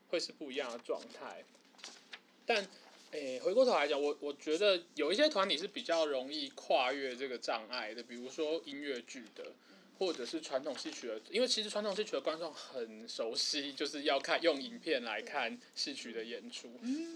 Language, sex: Chinese, male